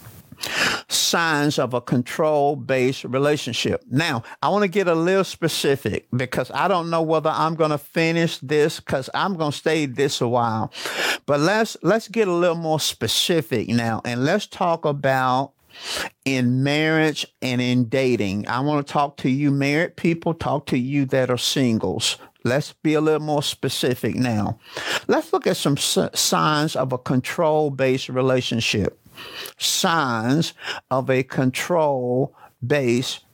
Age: 50-69